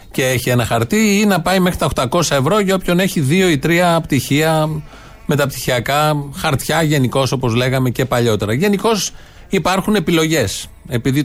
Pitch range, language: 125-165 Hz, Greek